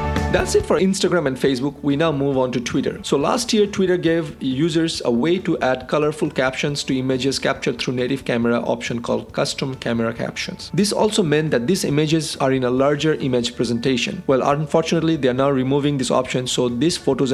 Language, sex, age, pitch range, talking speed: English, male, 40-59, 125-155 Hz, 200 wpm